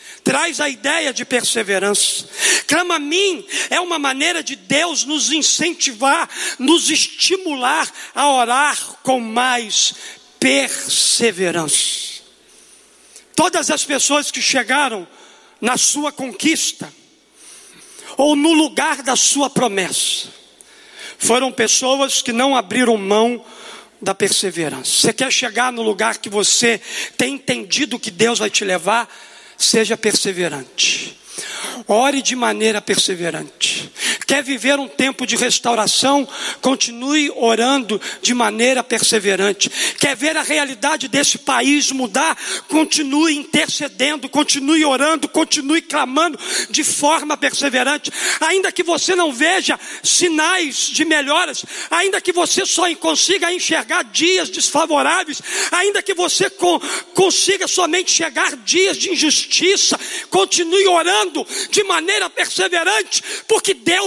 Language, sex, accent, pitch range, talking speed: Portuguese, male, Brazilian, 245-345 Hz, 115 wpm